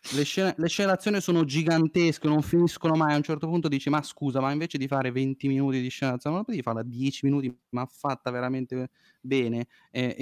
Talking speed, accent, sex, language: 195 wpm, native, male, Italian